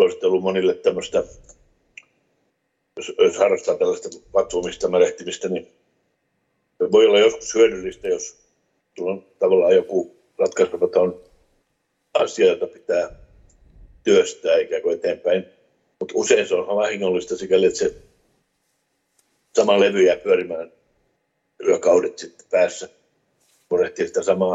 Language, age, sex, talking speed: Finnish, 60-79, male, 95 wpm